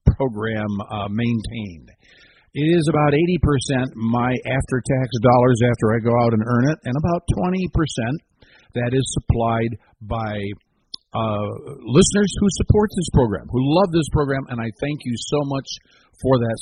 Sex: male